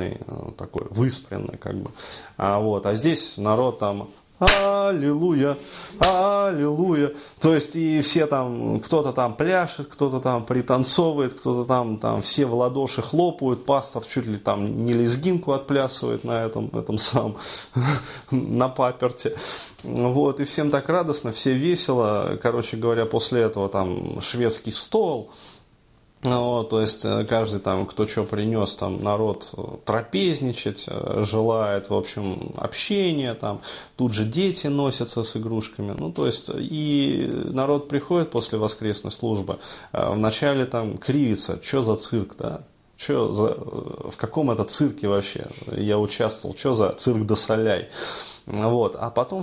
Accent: native